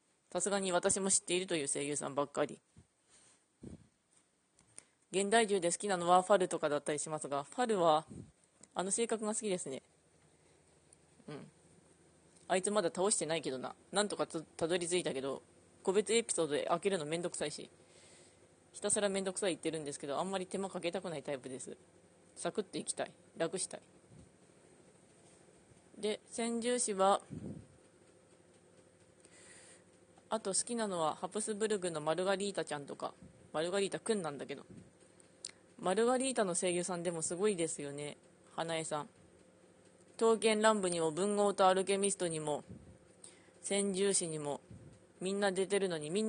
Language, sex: Japanese, female